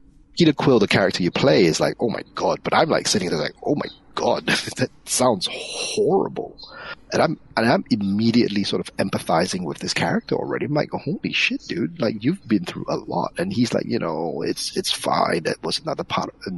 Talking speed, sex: 215 wpm, male